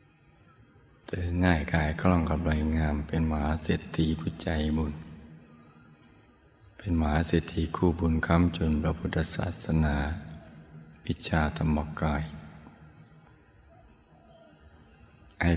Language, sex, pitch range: Thai, male, 75-80 Hz